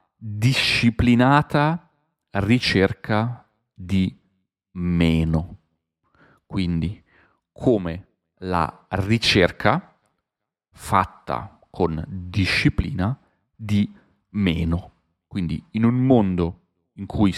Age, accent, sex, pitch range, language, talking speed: 40-59, native, male, 90-115 Hz, Italian, 65 wpm